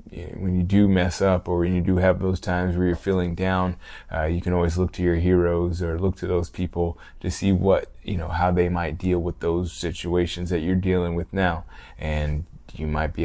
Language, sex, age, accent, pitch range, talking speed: English, male, 20-39, American, 85-95 Hz, 225 wpm